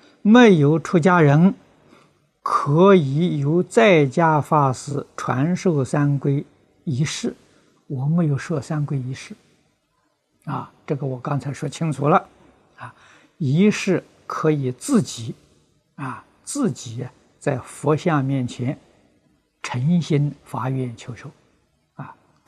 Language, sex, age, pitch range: Chinese, male, 60-79, 130-170 Hz